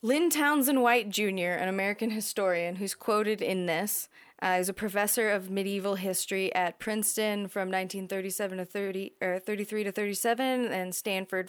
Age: 20-39